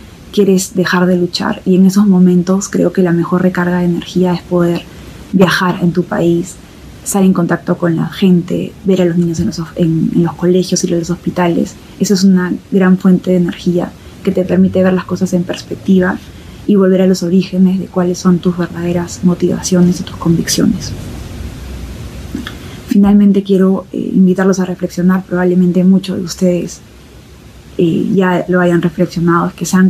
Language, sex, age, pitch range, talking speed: Spanish, female, 20-39, 175-190 Hz, 175 wpm